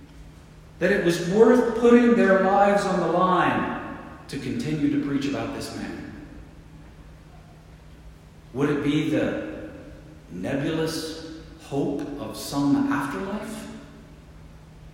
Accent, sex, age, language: American, male, 50-69, English